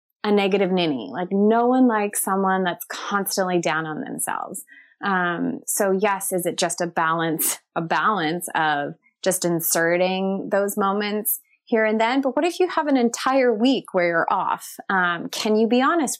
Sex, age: female, 20-39